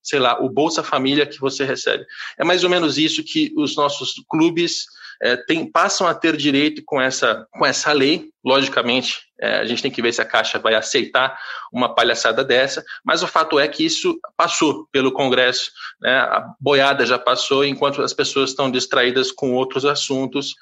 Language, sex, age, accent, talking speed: Portuguese, male, 20-39, Brazilian, 180 wpm